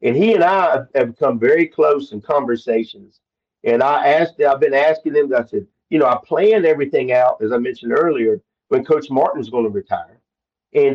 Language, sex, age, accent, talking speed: English, male, 50-69, American, 195 wpm